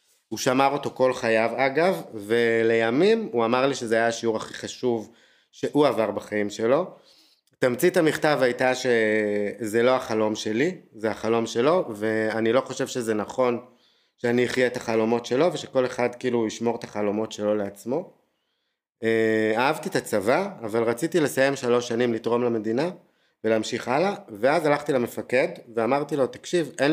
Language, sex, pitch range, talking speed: Hebrew, male, 110-135 Hz, 150 wpm